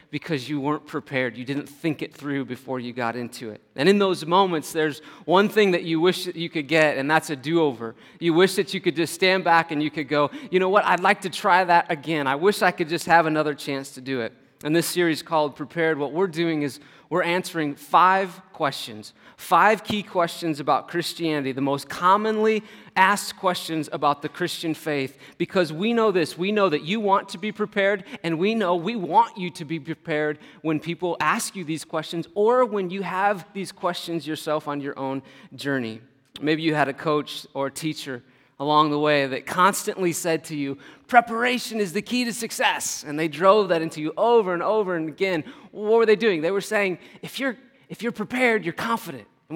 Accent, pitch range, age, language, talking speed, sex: American, 150-195 Hz, 30-49, English, 215 wpm, male